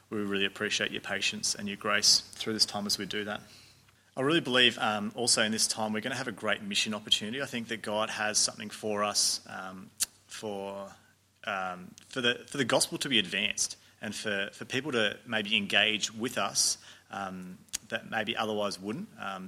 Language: English